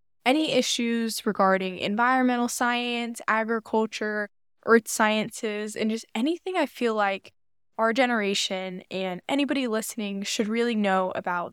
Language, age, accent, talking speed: English, 10-29, American, 120 wpm